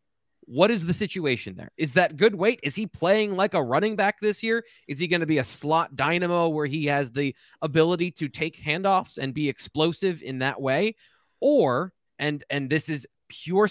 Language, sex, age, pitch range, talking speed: English, male, 30-49, 140-190 Hz, 200 wpm